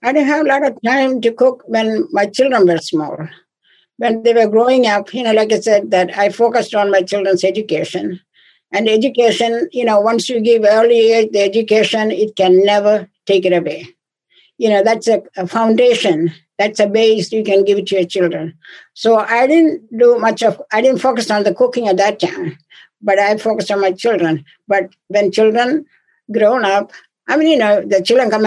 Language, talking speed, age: English, 200 wpm, 60-79